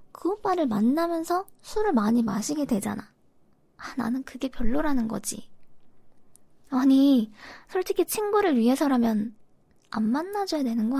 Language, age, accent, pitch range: Korean, 20-39, native, 230-310 Hz